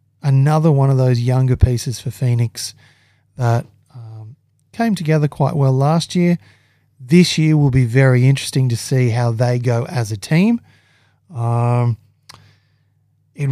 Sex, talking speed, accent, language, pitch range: male, 140 wpm, Australian, English, 115-140 Hz